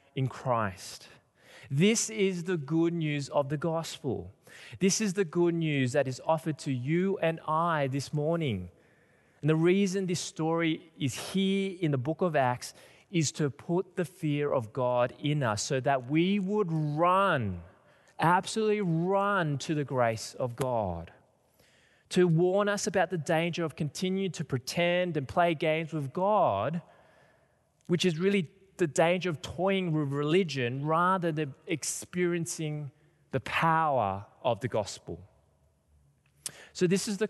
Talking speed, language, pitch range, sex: 150 wpm, English, 130-180 Hz, male